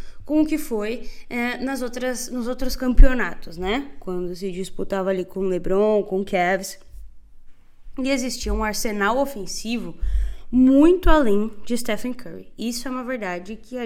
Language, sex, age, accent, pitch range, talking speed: Portuguese, female, 20-39, Brazilian, 195-265 Hz, 160 wpm